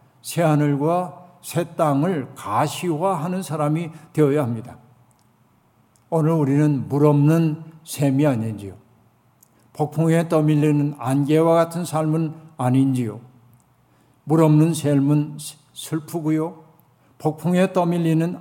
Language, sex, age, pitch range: Korean, male, 60-79, 130-165 Hz